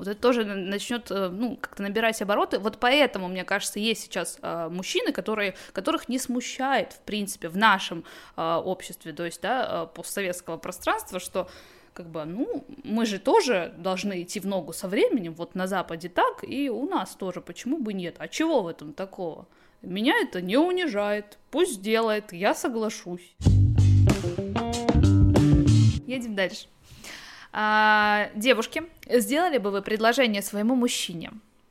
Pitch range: 185-250 Hz